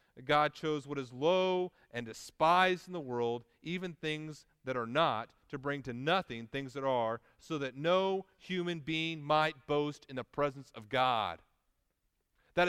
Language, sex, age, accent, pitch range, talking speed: English, male, 40-59, American, 120-155 Hz, 165 wpm